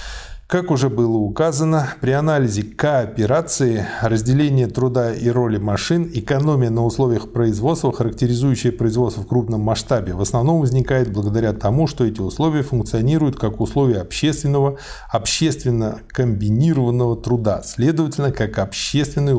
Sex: male